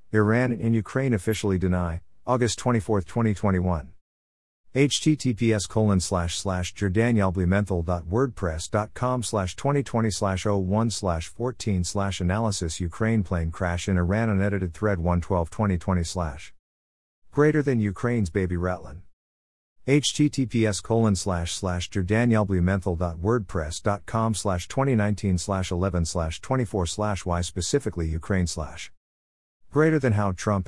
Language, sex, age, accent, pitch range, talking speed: English, male, 50-69, American, 90-110 Hz, 100 wpm